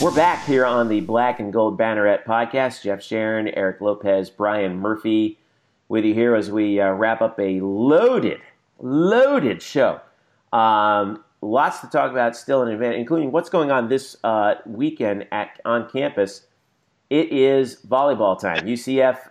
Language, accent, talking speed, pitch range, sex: English, American, 155 wpm, 105-125 Hz, male